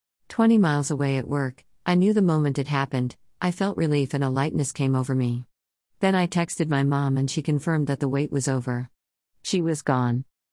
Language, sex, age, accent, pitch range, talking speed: English, female, 50-69, American, 130-155 Hz, 205 wpm